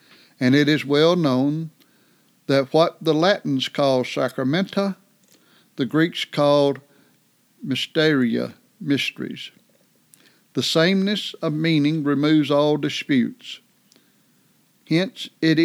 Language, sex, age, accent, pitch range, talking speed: English, male, 60-79, American, 135-160 Hz, 95 wpm